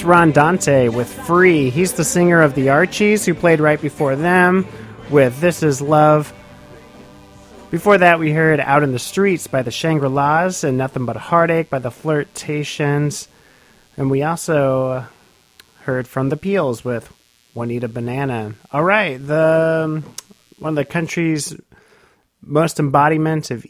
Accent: American